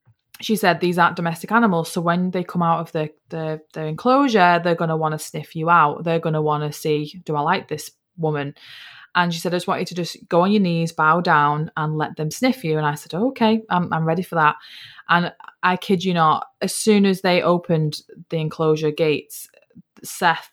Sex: female